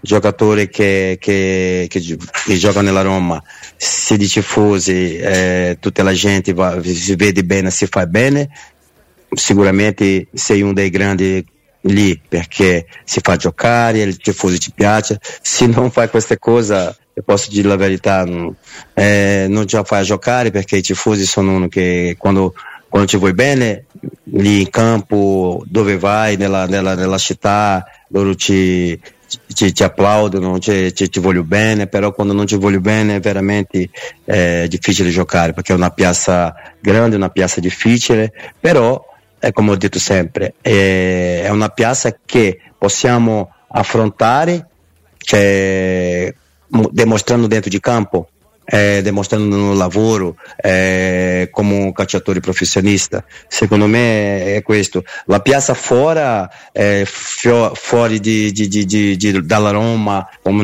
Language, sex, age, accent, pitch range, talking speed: Italian, male, 30-49, Brazilian, 95-105 Hz, 135 wpm